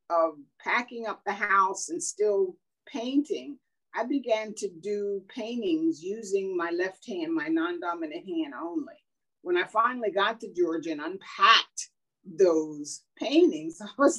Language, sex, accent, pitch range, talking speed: English, female, American, 205-340 Hz, 140 wpm